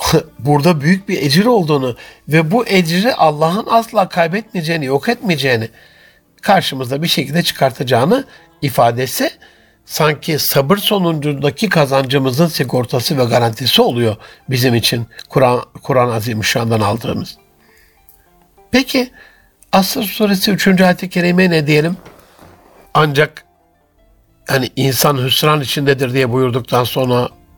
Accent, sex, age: native, male, 60-79